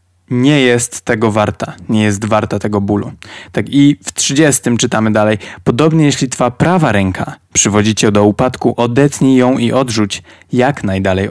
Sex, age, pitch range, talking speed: male, 20-39, 100-130 Hz, 160 wpm